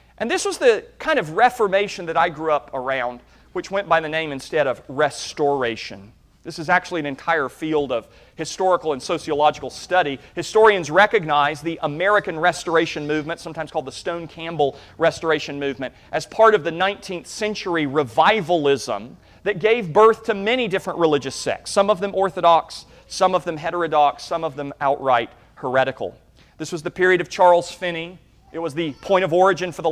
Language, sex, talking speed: English, male, 175 wpm